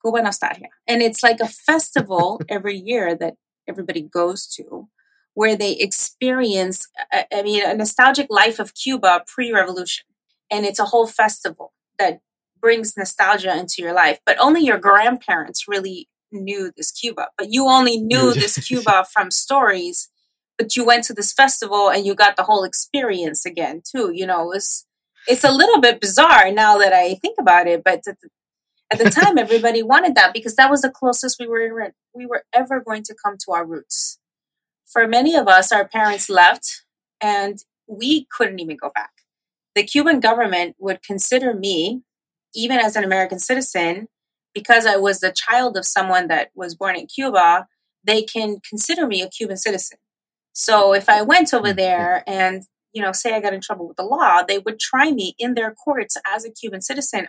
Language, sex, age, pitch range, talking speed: English, female, 30-49, 190-245 Hz, 180 wpm